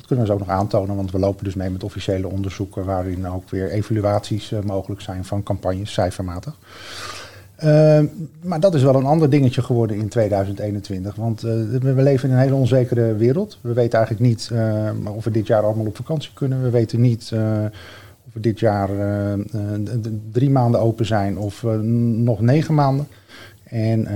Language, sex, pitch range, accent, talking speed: Dutch, male, 100-125 Hz, Dutch, 185 wpm